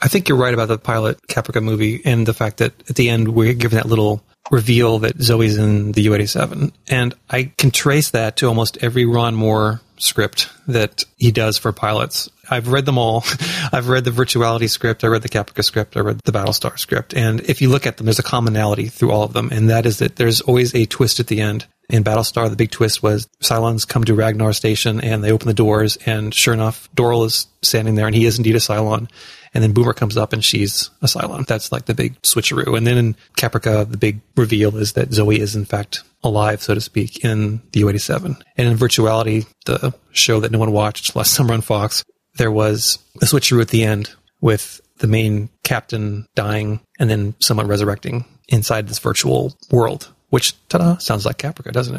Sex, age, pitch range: male, 30-49, 110-125 Hz